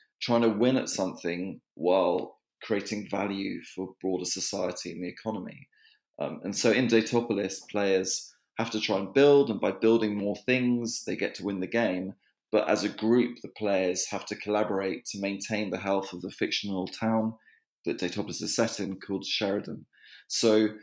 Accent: British